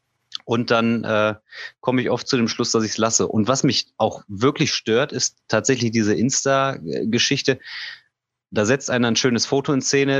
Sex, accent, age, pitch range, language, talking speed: male, German, 30-49, 110-135 Hz, German, 180 wpm